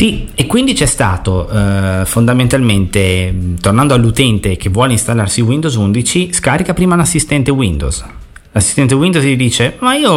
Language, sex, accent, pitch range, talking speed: Italian, male, native, 100-130 Hz, 135 wpm